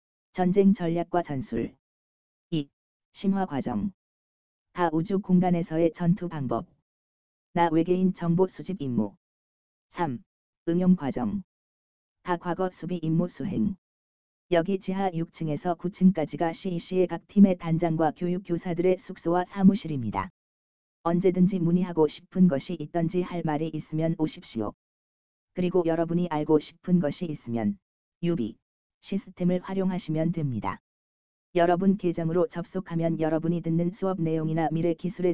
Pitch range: 145-180 Hz